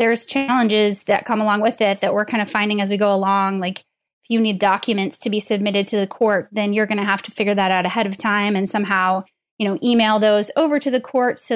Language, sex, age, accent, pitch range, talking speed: English, female, 10-29, American, 205-235 Hz, 260 wpm